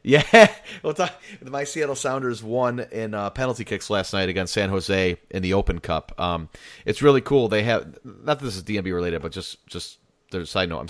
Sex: male